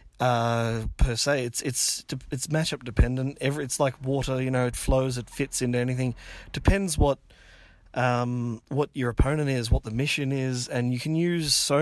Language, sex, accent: English, male, Australian